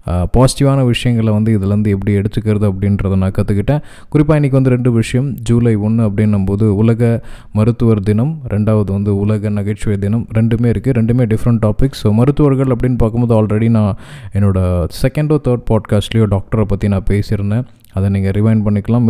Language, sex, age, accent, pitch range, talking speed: Tamil, male, 20-39, native, 105-125 Hz, 150 wpm